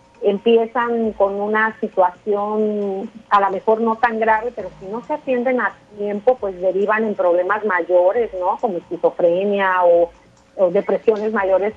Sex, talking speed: female, 150 wpm